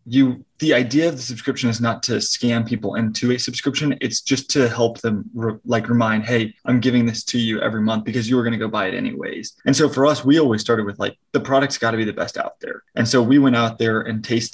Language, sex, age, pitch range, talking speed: English, male, 20-39, 110-125 Hz, 265 wpm